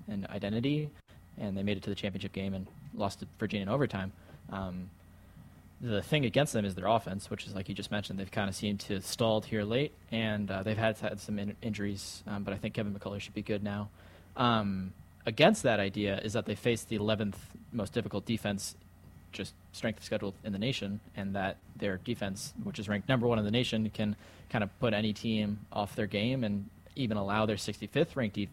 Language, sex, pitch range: English, male, 100-115 Hz